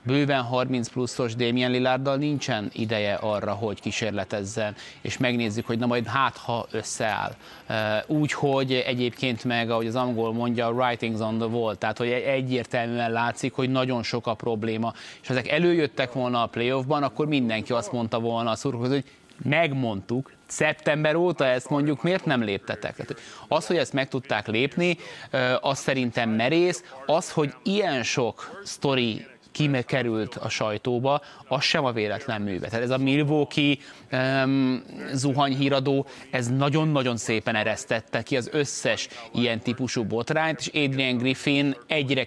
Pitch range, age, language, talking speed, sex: 120-140 Hz, 20-39, Hungarian, 145 wpm, male